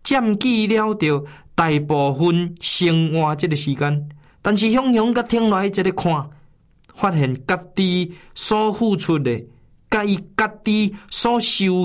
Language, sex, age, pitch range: Chinese, male, 20-39, 145-200 Hz